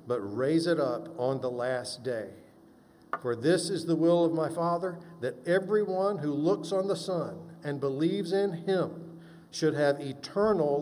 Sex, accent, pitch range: male, American, 135-170 Hz